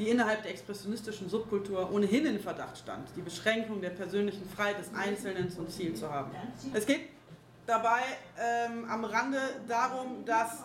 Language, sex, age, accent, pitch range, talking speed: German, female, 30-49, German, 200-260 Hz, 160 wpm